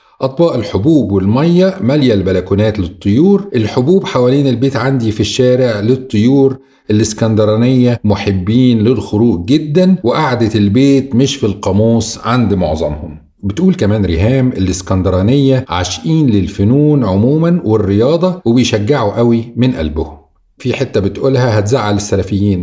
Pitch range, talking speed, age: 95-130 Hz, 110 wpm, 50-69